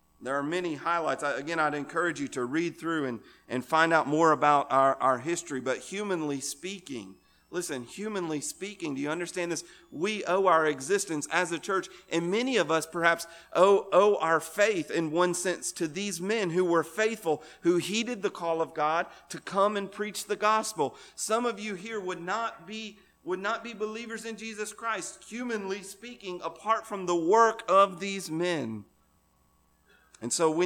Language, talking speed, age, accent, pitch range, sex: English, 180 wpm, 40-59, American, 140-185 Hz, male